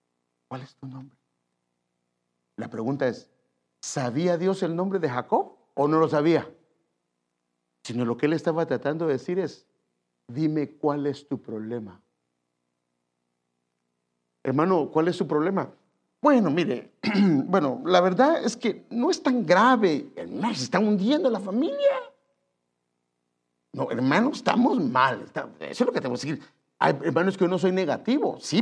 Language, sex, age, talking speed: English, male, 50-69, 150 wpm